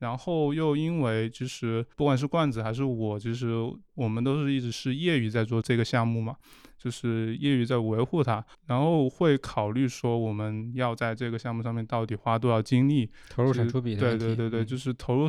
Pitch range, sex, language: 115-150 Hz, male, Chinese